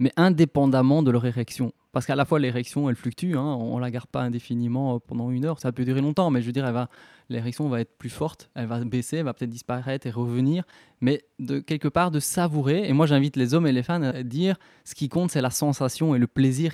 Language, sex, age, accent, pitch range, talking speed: French, male, 20-39, French, 130-160 Hz, 255 wpm